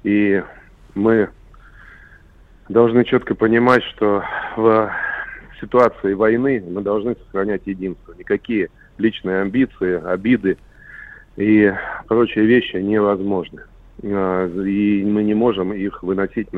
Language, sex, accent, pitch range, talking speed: Russian, male, native, 95-115 Hz, 100 wpm